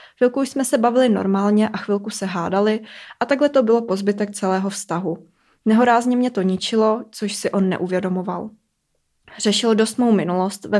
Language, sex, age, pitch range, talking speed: Czech, female, 20-39, 200-225 Hz, 160 wpm